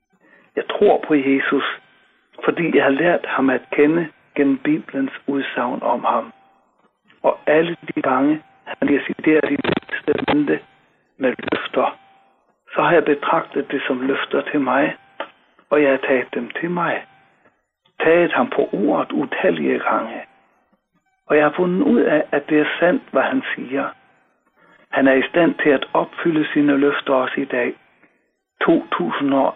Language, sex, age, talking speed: Danish, male, 60-79, 155 wpm